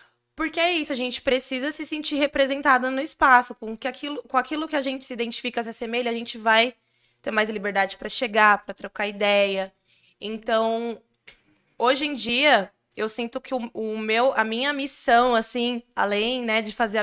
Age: 20-39